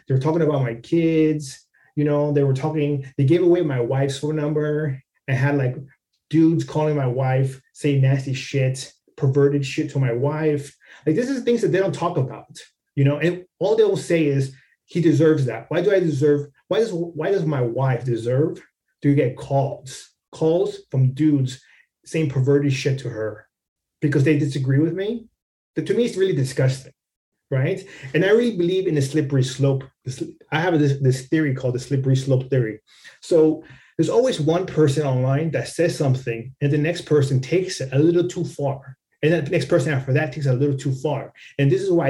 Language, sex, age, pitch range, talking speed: English, male, 30-49, 130-160 Hz, 200 wpm